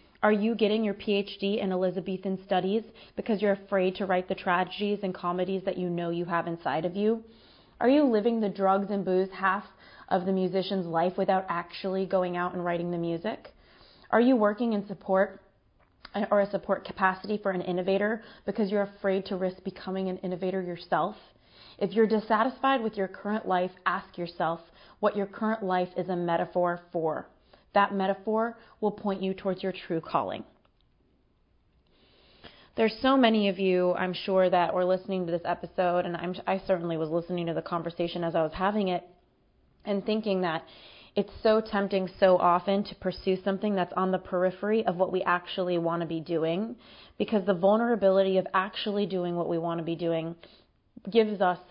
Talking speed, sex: 180 wpm, female